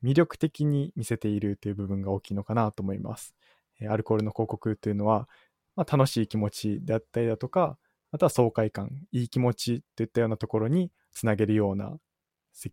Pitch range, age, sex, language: 110-135 Hz, 20-39, male, Japanese